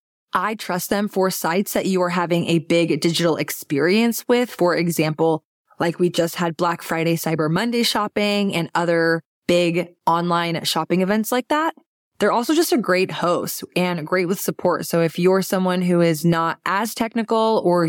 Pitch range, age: 170-210 Hz, 20-39